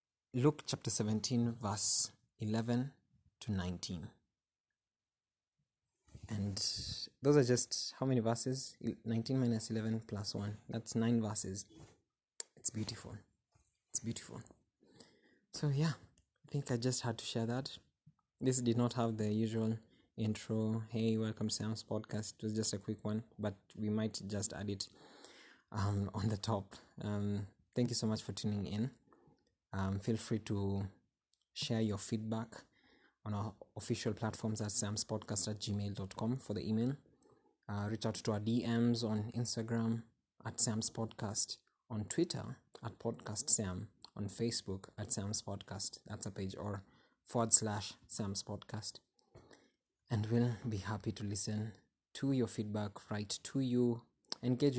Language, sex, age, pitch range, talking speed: English, male, 20-39, 105-115 Hz, 140 wpm